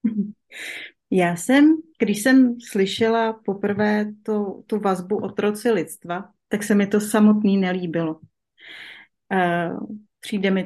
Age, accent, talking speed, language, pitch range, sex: 30-49, native, 120 wpm, Czech, 190-230 Hz, female